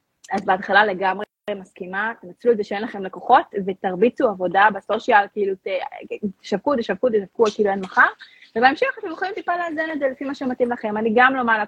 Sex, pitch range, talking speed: female, 195-240 Hz, 185 wpm